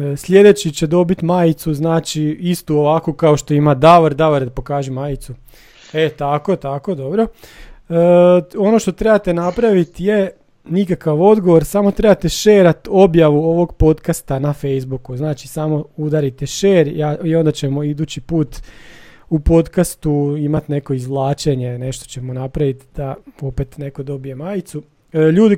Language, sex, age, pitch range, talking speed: Croatian, male, 30-49, 145-175 Hz, 135 wpm